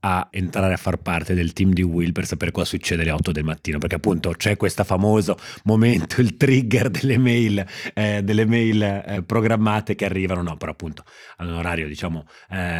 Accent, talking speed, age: native, 190 wpm, 30-49